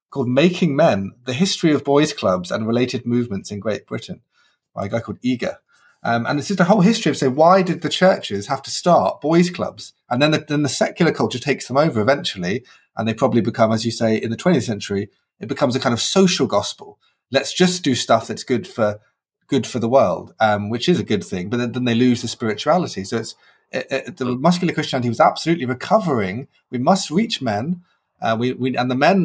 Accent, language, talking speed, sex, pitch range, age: British, English, 230 wpm, male, 110-155 Hz, 30-49